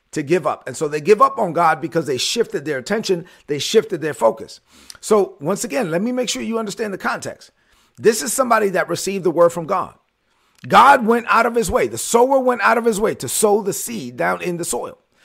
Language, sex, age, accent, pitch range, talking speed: English, male, 40-59, American, 175-235 Hz, 235 wpm